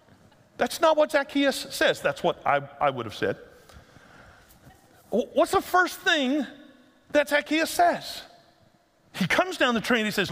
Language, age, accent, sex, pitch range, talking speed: English, 50-69, American, male, 185-280 Hz, 155 wpm